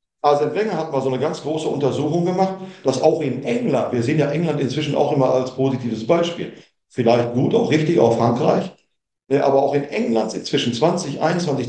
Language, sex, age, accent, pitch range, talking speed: German, male, 50-69, German, 125-155 Hz, 190 wpm